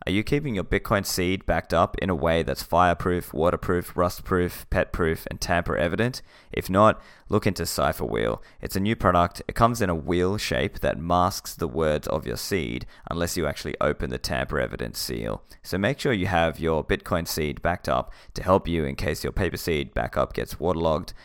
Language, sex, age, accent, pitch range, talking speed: English, male, 20-39, Australian, 75-95 Hz, 200 wpm